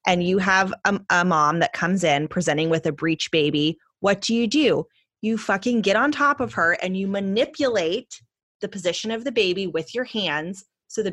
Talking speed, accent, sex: 205 wpm, American, female